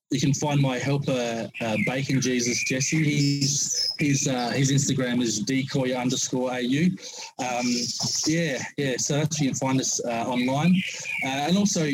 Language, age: English, 20-39